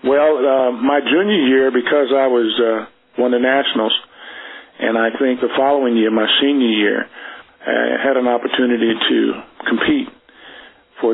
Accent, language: American, English